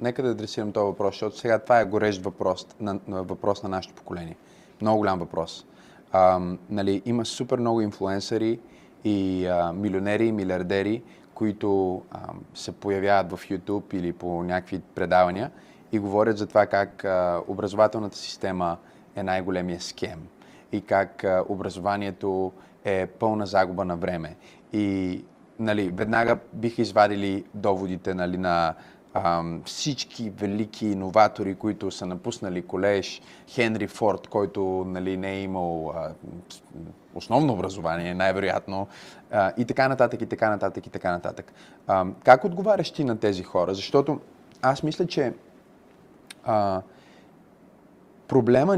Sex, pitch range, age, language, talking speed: male, 95-110 Hz, 20-39, Bulgarian, 130 wpm